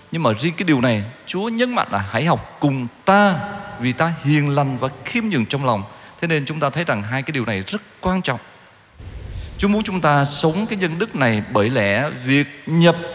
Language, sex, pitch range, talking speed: Vietnamese, male, 120-185 Hz, 225 wpm